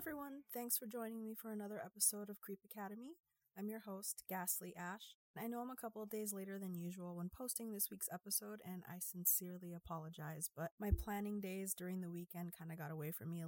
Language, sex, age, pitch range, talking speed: English, female, 30-49, 175-215 Hz, 220 wpm